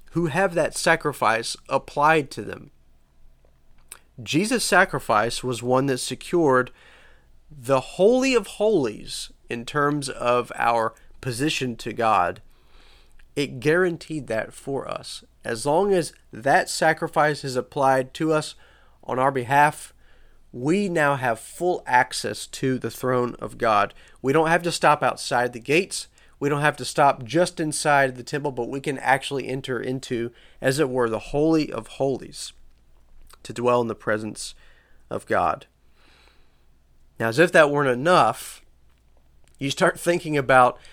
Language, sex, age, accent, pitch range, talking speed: English, male, 30-49, American, 115-150 Hz, 145 wpm